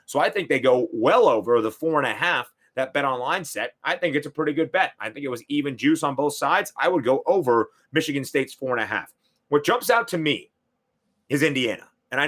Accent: American